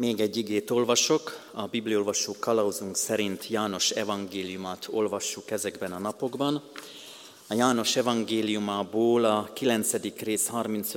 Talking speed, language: 110 wpm, Hungarian